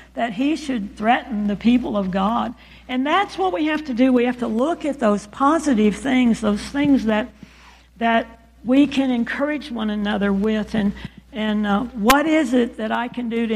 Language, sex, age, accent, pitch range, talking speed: English, female, 60-79, American, 195-240 Hz, 195 wpm